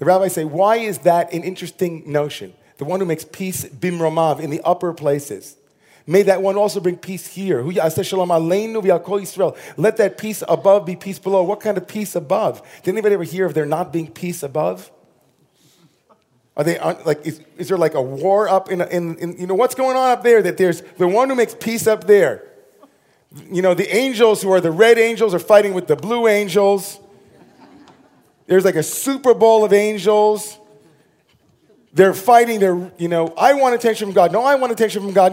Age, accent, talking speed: 30-49, American, 200 wpm